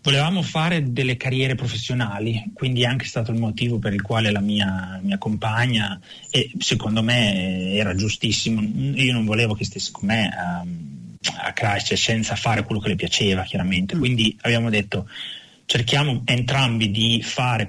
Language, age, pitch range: Italian, 30-49, 105-125 Hz